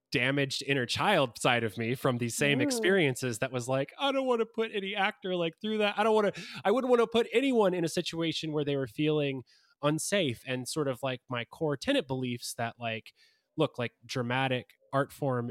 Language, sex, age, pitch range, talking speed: English, male, 20-39, 115-155 Hz, 215 wpm